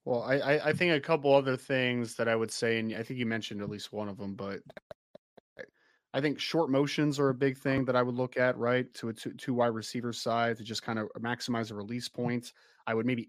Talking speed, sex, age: 240 wpm, male, 30-49